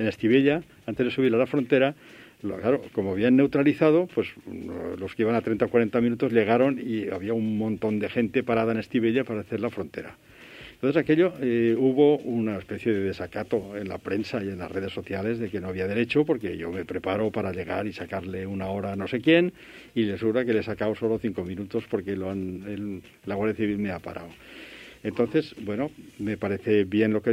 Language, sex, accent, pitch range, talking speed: Spanish, male, Spanish, 105-135 Hz, 215 wpm